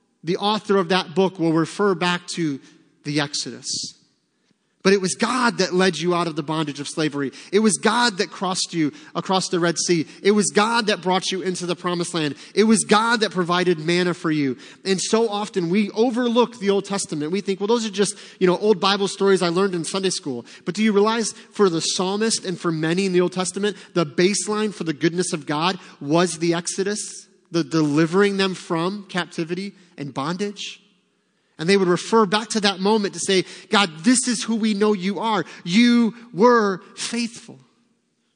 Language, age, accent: English, 30-49, American